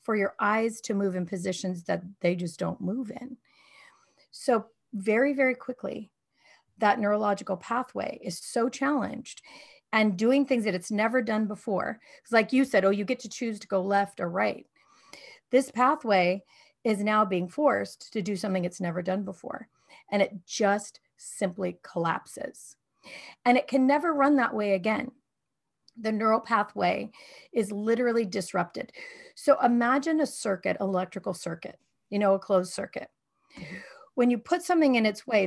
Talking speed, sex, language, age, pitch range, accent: 160 wpm, female, English, 40-59, 195-255 Hz, American